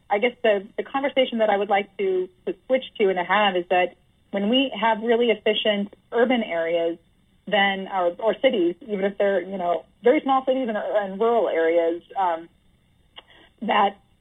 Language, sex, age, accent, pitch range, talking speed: English, female, 30-49, American, 180-215 Hz, 180 wpm